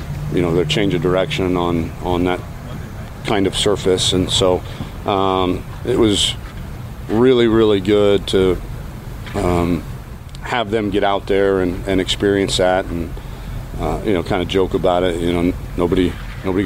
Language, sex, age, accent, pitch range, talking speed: English, male, 40-59, American, 95-110 Hz, 160 wpm